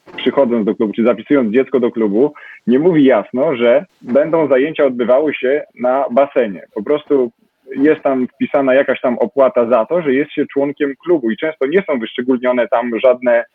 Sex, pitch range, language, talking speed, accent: male, 110-135 Hz, Polish, 175 wpm, native